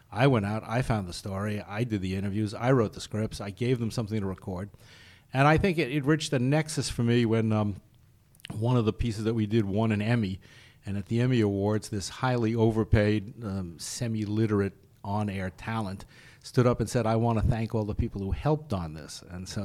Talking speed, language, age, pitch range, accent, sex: 215 wpm, English, 50-69, 100-120 Hz, American, male